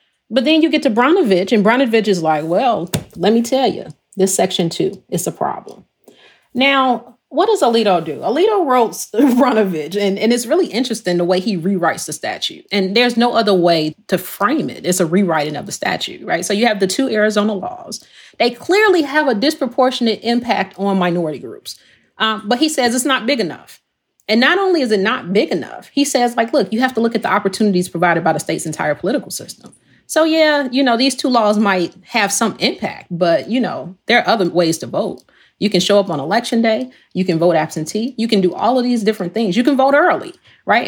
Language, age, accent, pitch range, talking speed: English, 30-49, American, 185-265 Hz, 220 wpm